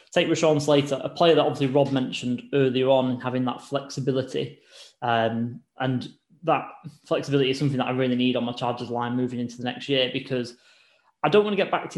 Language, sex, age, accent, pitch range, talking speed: English, male, 10-29, British, 125-140 Hz, 200 wpm